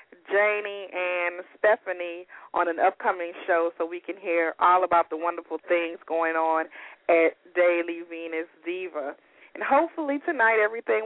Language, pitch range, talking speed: English, 170-215 Hz, 140 wpm